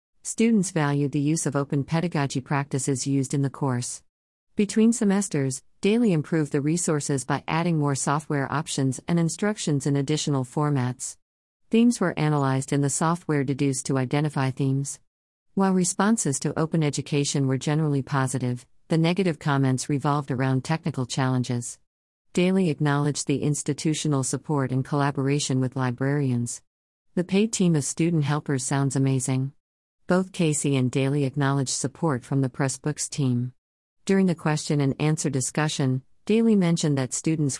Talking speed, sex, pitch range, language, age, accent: 140 wpm, female, 130-160 Hz, English, 50-69, American